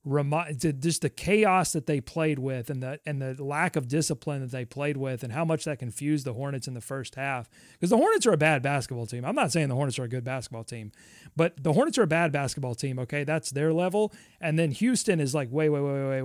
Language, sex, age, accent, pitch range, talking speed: English, male, 30-49, American, 135-170 Hz, 250 wpm